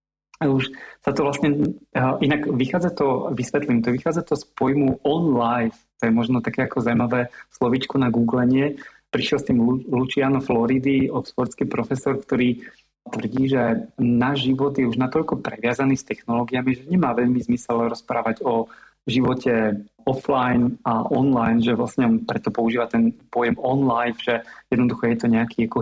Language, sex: Slovak, male